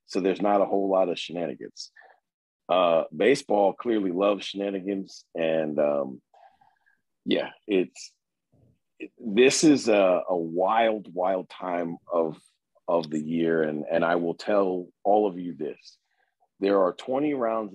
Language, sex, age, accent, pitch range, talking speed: English, male, 40-59, American, 85-100 Hz, 140 wpm